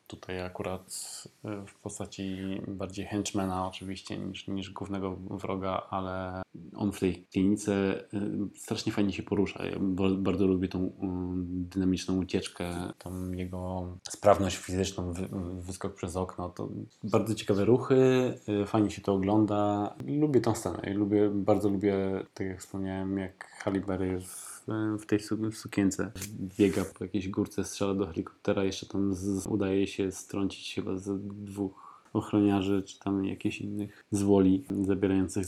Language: Polish